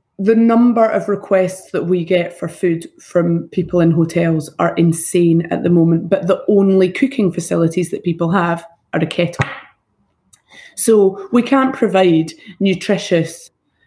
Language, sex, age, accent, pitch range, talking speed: English, female, 30-49, British, 170-205 Hz, 145 wpm